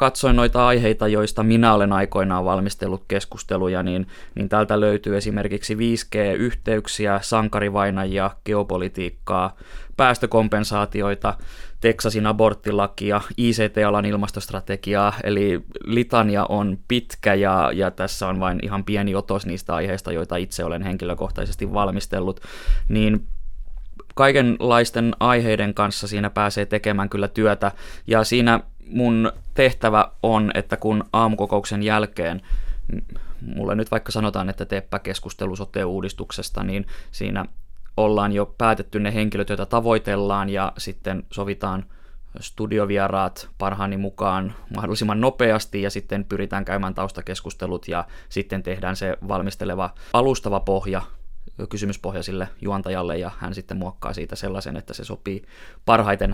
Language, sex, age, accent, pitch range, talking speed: Finnish, male, 20-39, native, 95-105 Hz, 115 wpm